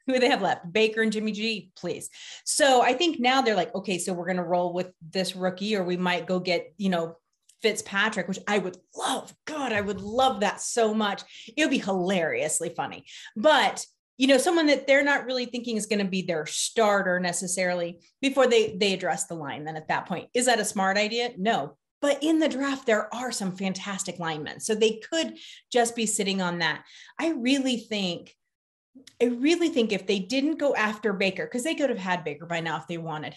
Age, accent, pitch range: 30-49, American, 180-235 Hz